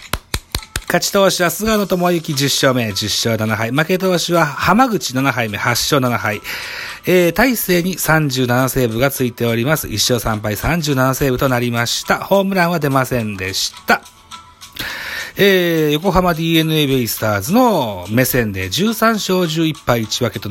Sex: male